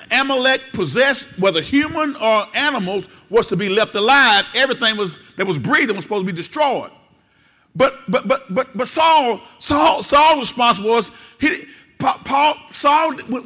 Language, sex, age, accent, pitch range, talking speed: English, male, 50-69, American, 185-255 Hz, 155 wpm